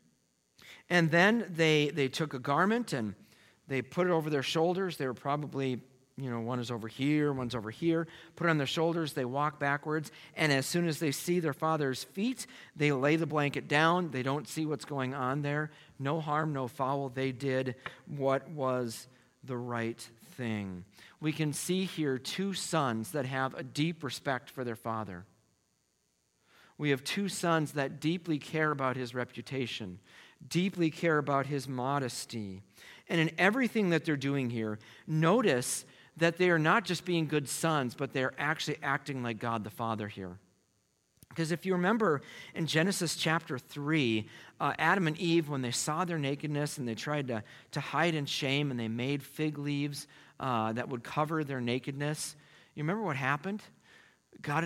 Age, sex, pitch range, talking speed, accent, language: 40-59, male, 130-160 Hz, 175 wpm, American, English